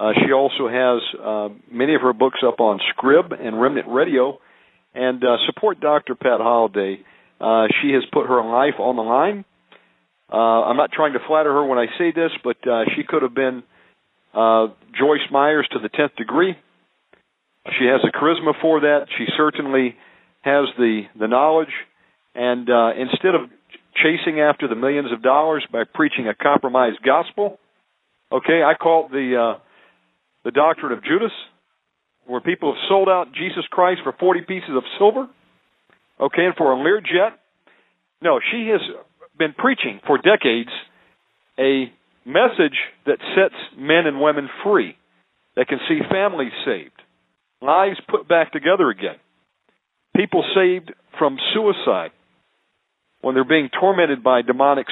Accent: American